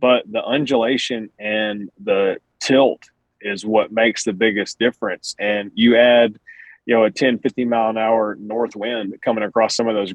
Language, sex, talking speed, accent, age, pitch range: English, male, 160 wpm, American, 30-49, 105-120 Hz